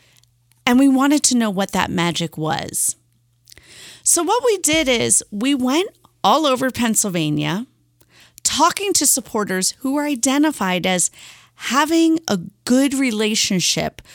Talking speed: 125 wpm